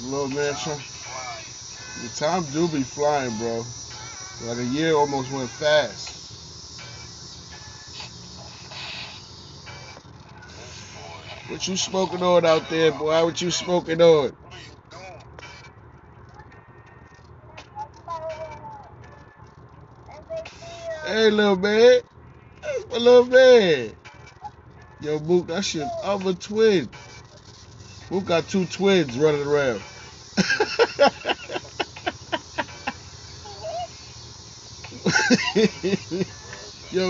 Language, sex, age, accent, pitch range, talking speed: English, male, 20-39, American, 135-195 Hz, 75 wpm